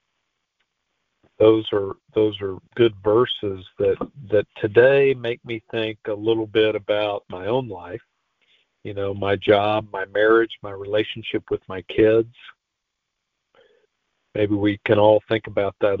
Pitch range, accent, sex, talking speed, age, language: 105-135 Hz, American, male, 140 wpm, 50-69, English